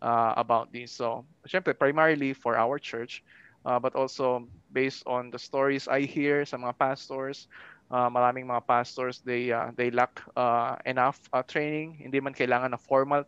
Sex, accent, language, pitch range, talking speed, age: male, native, Filipino, 125-140 Hz, 165 wpm, 20-39